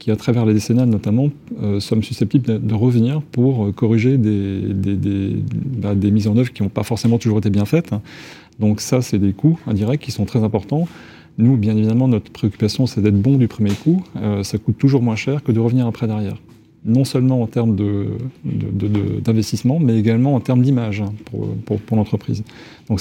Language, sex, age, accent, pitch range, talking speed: French, male, 30-49, French, 105-125 Hz, 195 wpm